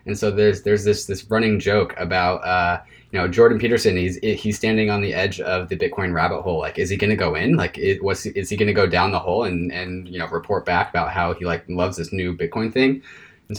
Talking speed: 260 wpm